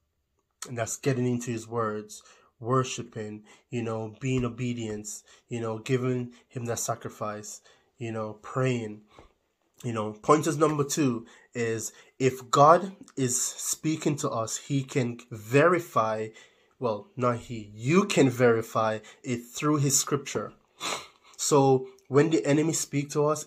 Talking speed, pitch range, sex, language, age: 135 wpm, 115-140 Hz, male, English, 20-39